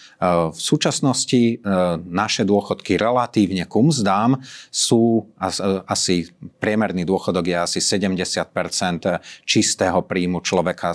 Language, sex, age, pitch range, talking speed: Slovak, male, 30-49, 90-110 Hz, 95 wpm